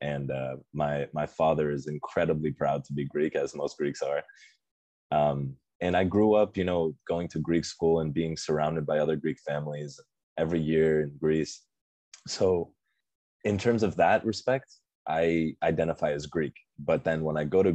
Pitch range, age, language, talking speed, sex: 75-85 Hz, 20-39, English, 180 wpm, male